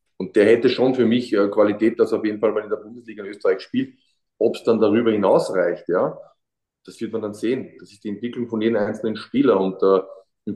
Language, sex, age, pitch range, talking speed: German, male, 30-49, 110-140 Hz, 240 wpm